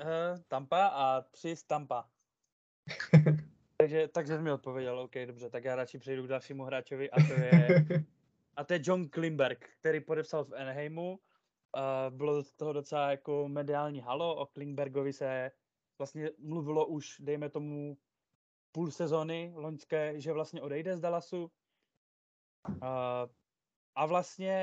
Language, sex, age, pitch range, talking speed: Czech, male, 20-39, 135-160 Hz, 135 wpm